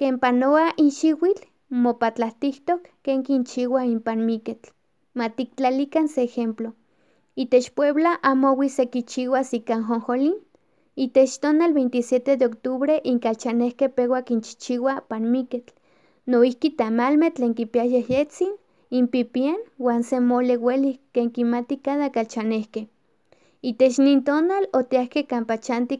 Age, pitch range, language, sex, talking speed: 20-39, 235-275 Hz, Spanish, female, 85 wpm